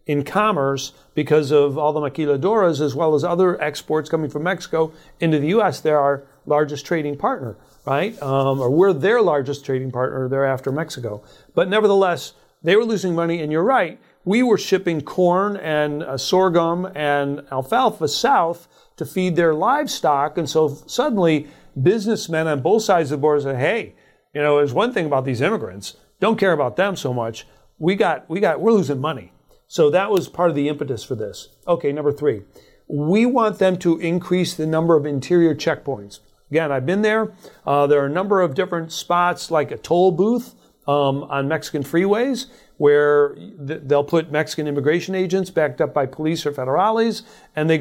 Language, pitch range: English, 145-185 Hz